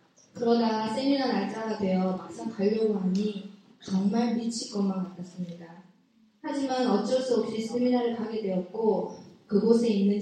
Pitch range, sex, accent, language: 185-235 Hz, female, native, Korean